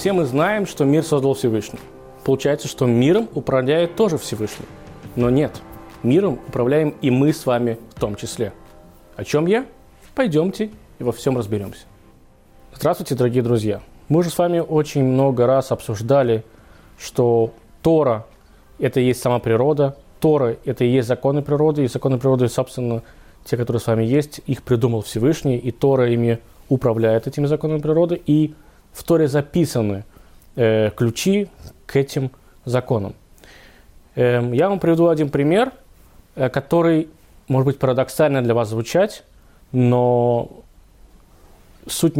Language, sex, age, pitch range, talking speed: Russian, male, 20-39, 115-150 Hz, 145 wpm